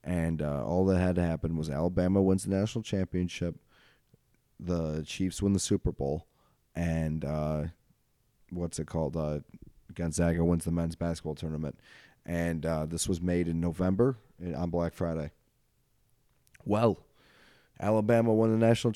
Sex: male